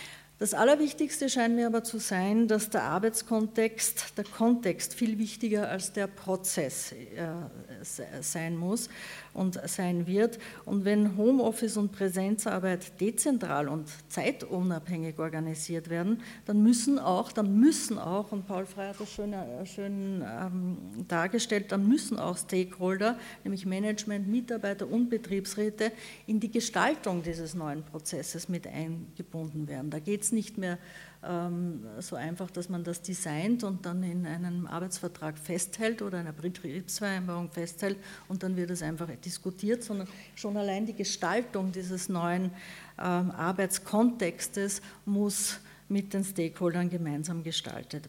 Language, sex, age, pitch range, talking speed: English, female, 50-69, 175-220 Hz, 130 wpm